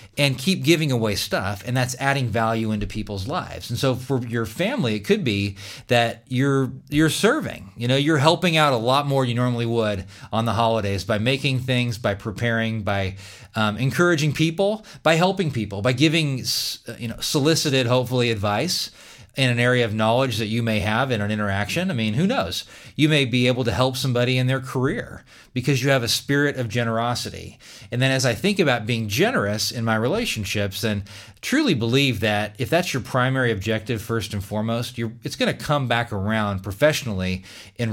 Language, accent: English, American